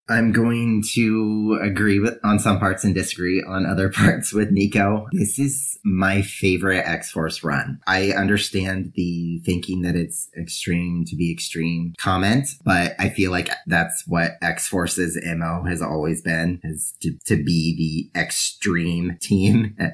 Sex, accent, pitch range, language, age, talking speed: male, American, 90-105 Hz, English, 30-49, 145 wpm